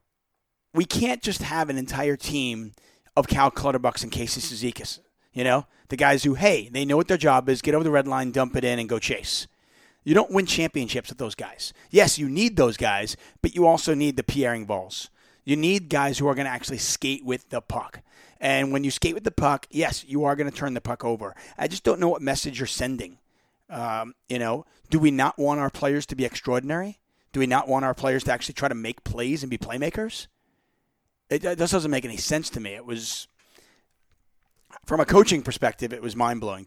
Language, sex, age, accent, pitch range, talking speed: English, male, 30-49, American, 120-145 Hz, 220 wpm